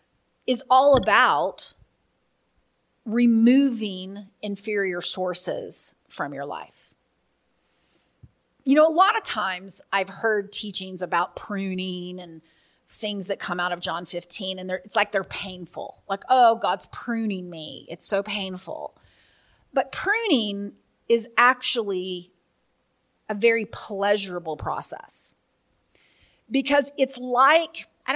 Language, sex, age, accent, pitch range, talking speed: English, female, 30-49, American, 190-250 Hz, 115 wpm